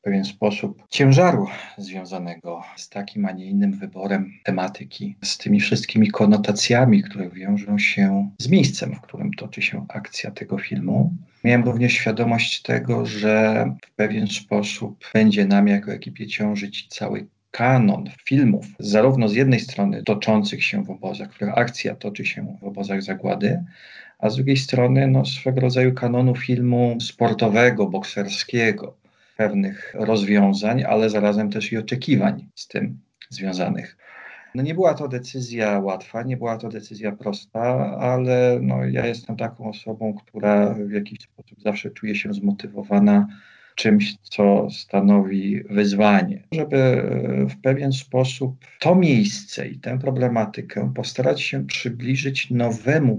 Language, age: Polish, 40-59